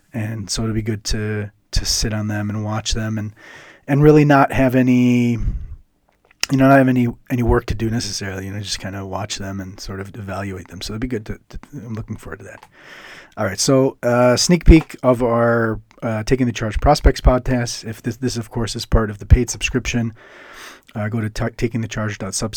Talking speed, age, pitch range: 220 wpm, 30-49, 110-130 Hz